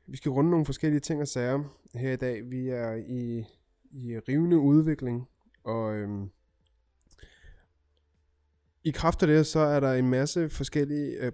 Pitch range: 105-135 Hz